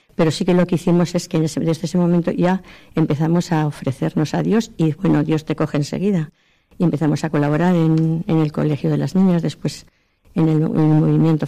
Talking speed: 210 wpm